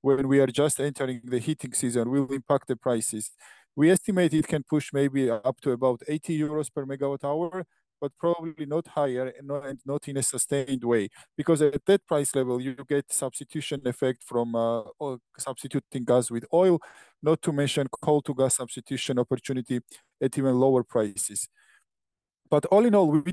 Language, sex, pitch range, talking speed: English, male, 125-150 Hz, 175 wpm